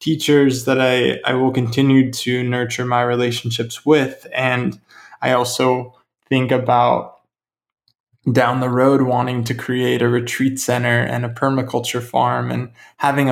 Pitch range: 120-130 Hz